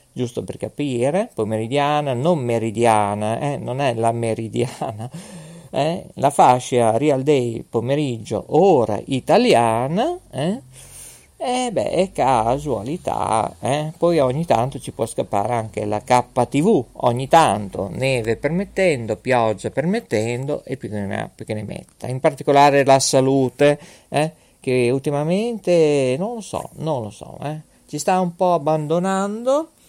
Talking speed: 125 wpm